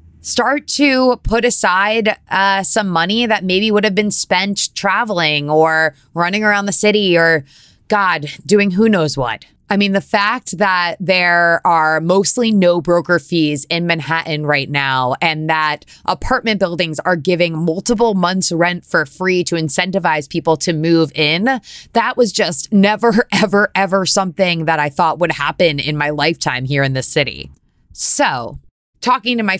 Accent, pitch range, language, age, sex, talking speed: American, 160-210 Hz, English, 20-39, female, 160 wpm